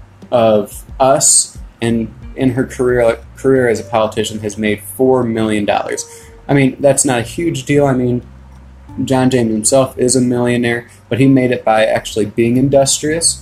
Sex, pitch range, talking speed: male, 105-120 Hz, 175 wpm